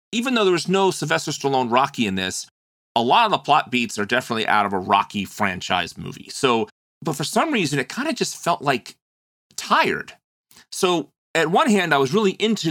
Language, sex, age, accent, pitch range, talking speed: English, male, 30-49, American, 110-145 Hz, 210 wpm